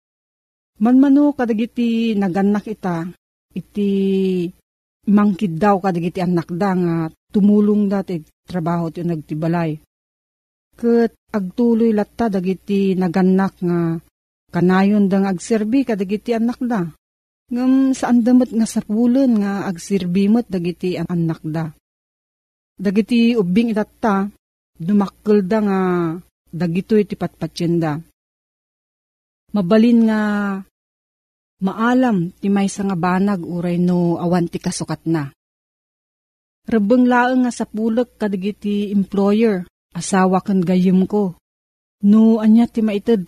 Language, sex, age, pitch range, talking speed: Filipino, female, 40-59, 175-220 Hz, 105 wpm